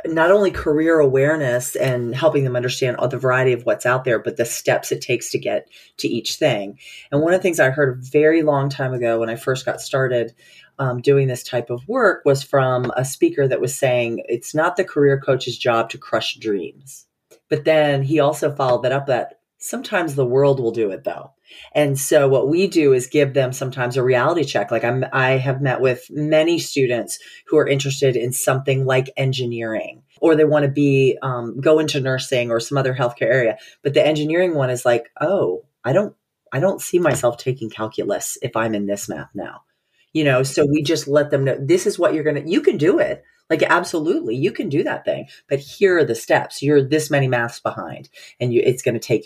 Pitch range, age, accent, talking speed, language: 125-150 Hz, 30-49, American, 220 wpm, English